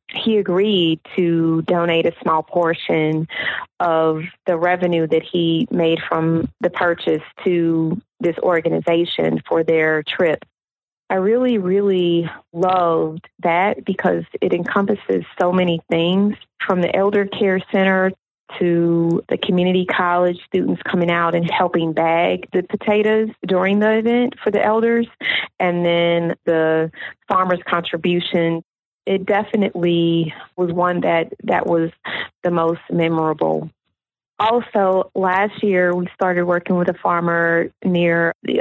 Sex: female